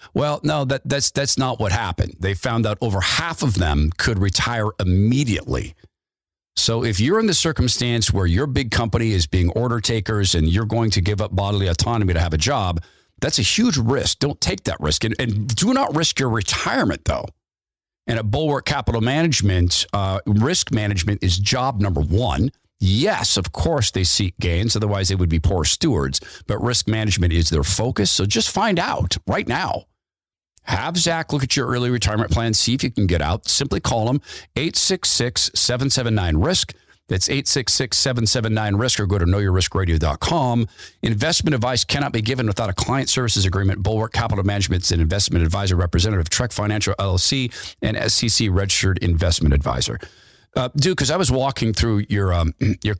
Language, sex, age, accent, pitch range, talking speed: English, male, 50-69, American, 95-120 Hz, 175 wpm